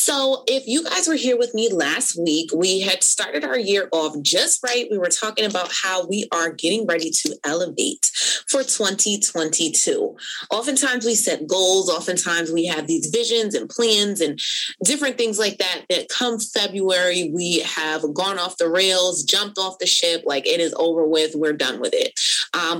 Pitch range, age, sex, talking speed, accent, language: 165-230 Hz, 20-39, female, 185 wpm, American, English